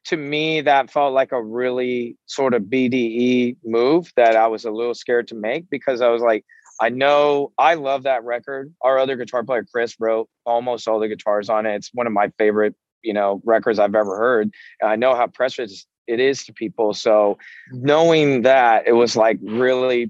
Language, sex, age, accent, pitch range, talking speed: English, male, 30-49, American, 110-125 Hz, 200 wpm